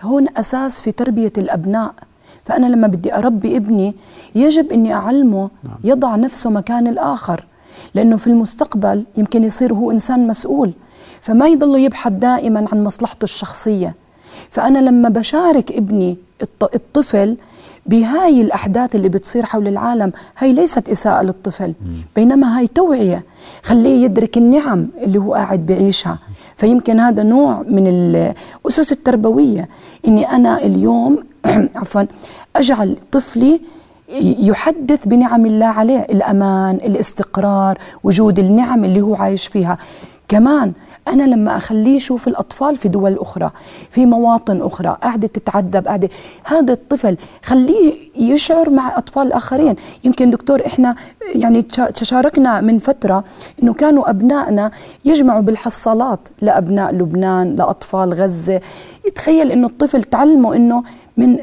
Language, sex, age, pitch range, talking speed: Arabic, female, 40-59, 200-265 Hz, 120 wpm